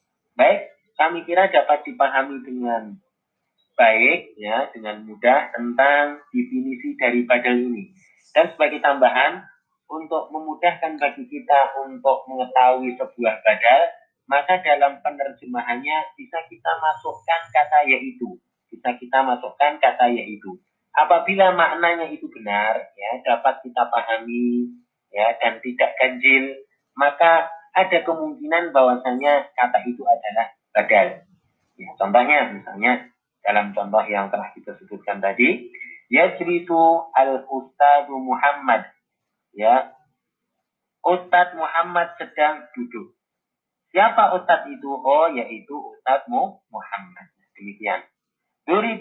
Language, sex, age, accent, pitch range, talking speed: Indonesian, male, 30-49, native, 125-170 Hz, 105 wpm